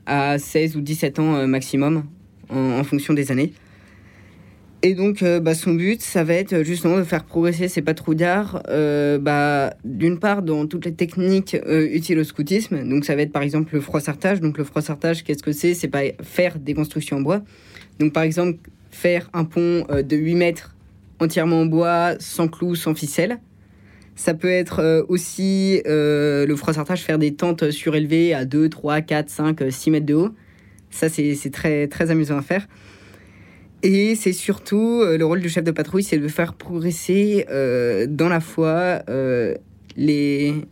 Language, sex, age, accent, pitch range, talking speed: French, female, 20-39, French, 145-170 Hz, 185 wpm